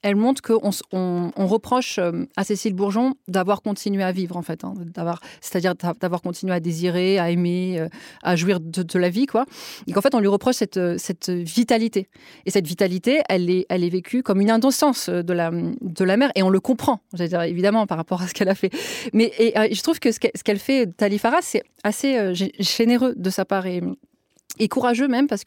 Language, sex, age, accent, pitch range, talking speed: French, female, 20-39, French, 190-255 Hz, 210 wpm